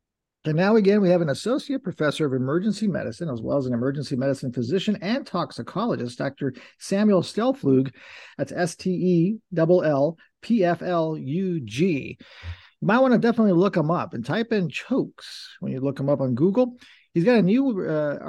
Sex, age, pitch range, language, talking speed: male, 50-69, 140-195 Hz, English, 160 wpm